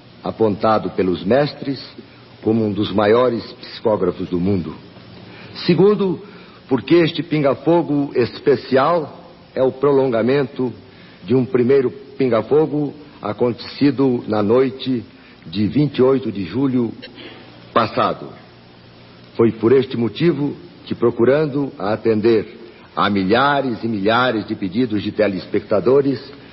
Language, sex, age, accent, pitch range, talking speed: Portuguese, male, 60-79, Brazilian, 105-140 Hz, 100 wpm